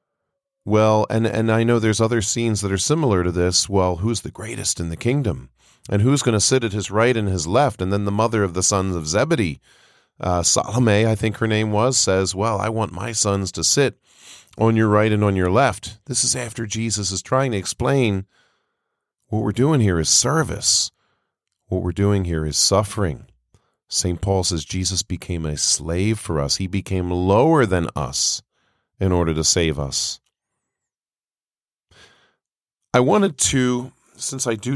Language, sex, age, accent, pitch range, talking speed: English, male, 40-59, American, 85-110 Hz, 185 wpm